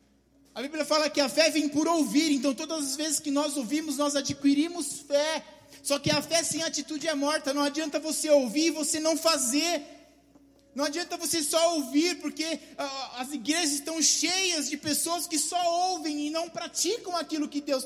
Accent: Brazilian